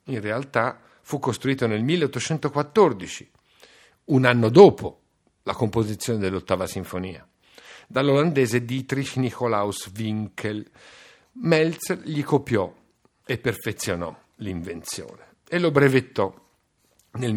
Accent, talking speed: native, 95 wpm